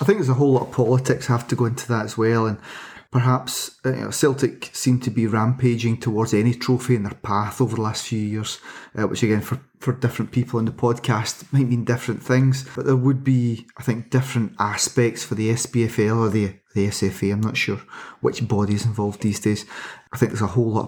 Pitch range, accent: 115-130 Hz, British